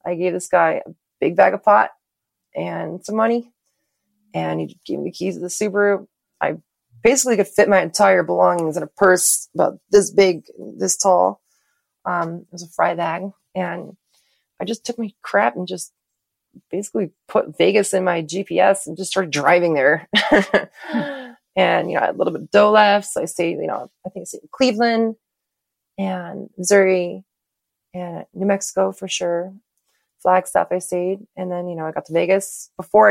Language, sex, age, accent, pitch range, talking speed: English, female, 30-49, American, 170-200 Hz, 180 wpm